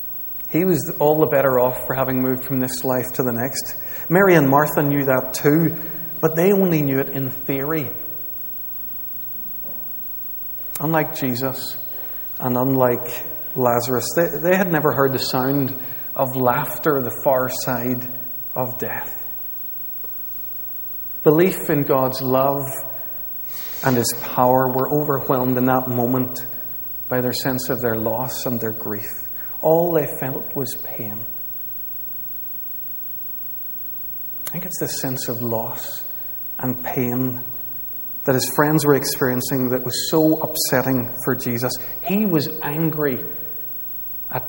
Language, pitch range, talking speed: English, 125-145 Hz, 130 wpm